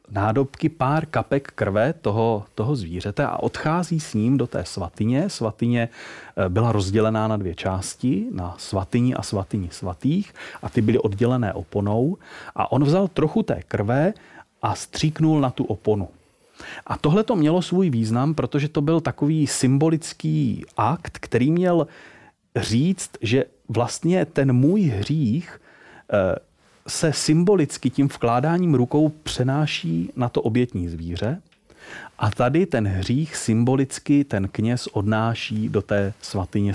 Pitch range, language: 105-150 Hz, Czech